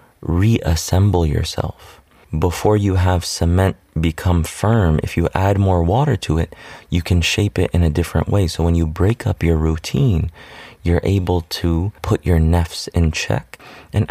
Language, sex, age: English, male, 30-49